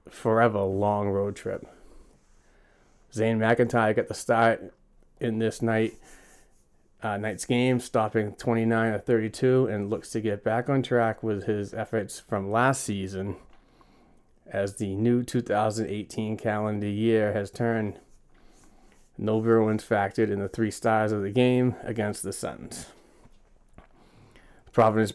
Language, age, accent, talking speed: English, 30-49, American, 125 wpm